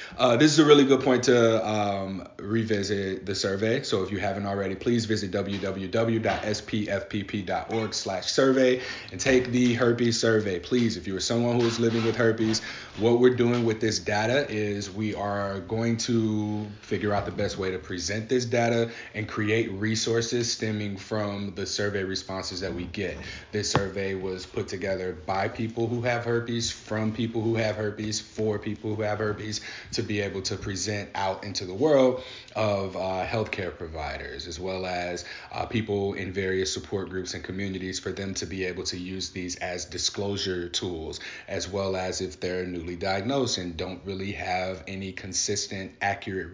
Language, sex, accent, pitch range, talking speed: English, male, American, 95-115 Hz, 175 wpm